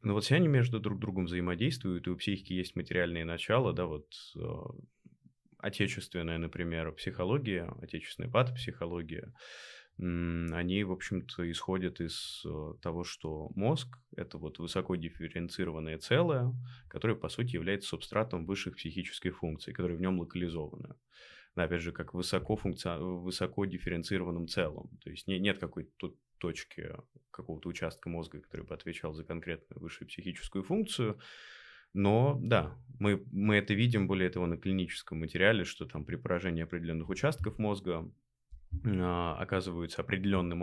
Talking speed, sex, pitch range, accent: 135 wpm, male, 85-100 Hz, native